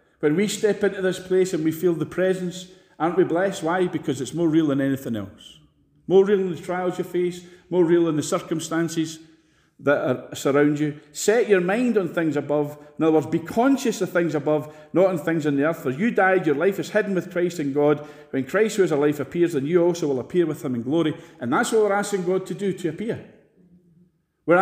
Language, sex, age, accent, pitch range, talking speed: English, male, 40-59, British, 150-195 Hz, 230 wpm